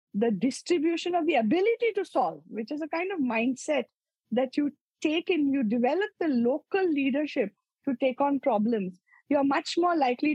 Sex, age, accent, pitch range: female, 50-69, Indian, 225-315 Hz